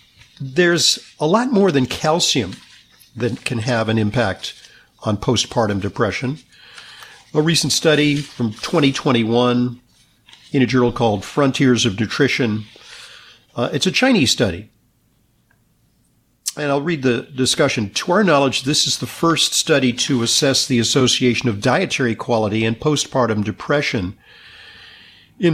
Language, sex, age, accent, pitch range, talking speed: English, male, 50-69, American, 115-145 Hz, 130 wpm